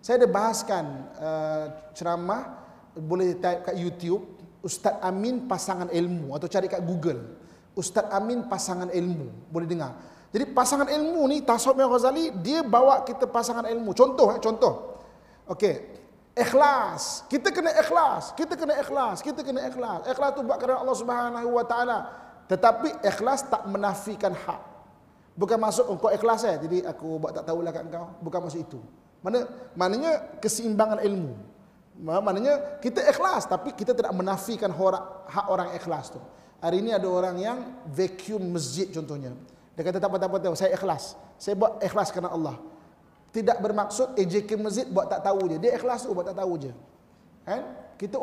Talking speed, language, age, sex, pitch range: 165 wpm, Malay, 30-49, male, 175-245 Hz